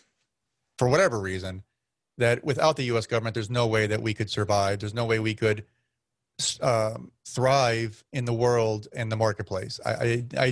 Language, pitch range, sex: English, 105-125 Hz, male